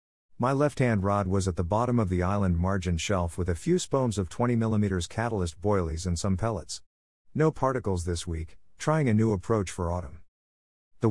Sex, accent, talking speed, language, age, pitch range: male, American, 190 wpm, English, 50-69, 85-115 Hz